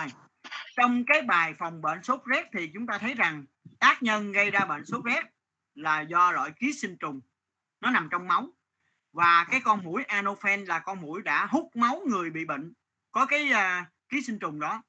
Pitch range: 160-240 Hz